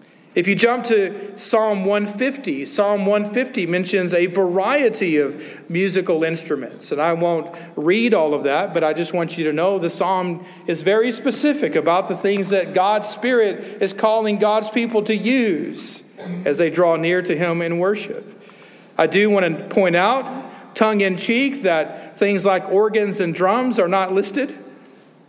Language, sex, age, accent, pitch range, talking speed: English, male, 40-59, American, 150-215 Hz, 170 wpm